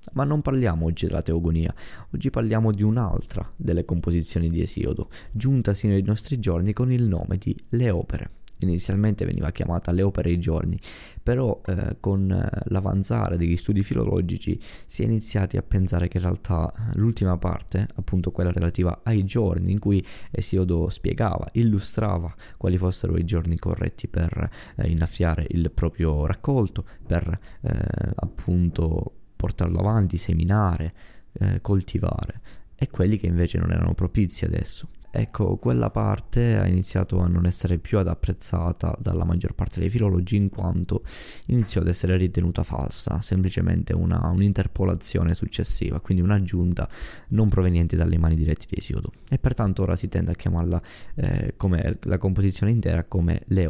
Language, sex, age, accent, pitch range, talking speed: Italian, male, 20-39, native, 85-105 Hz, 155 wpm